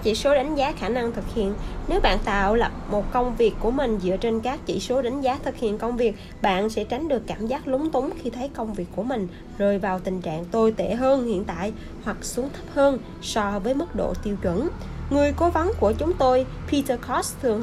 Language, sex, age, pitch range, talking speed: Vietnamese, female, 20-39, 200-260 Hz, 240 wpm